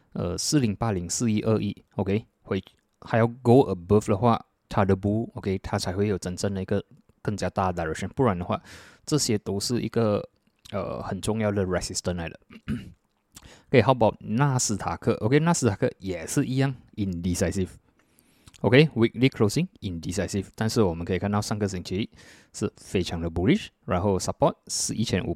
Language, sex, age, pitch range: Chinese, male, 20-39, 90-115 Hz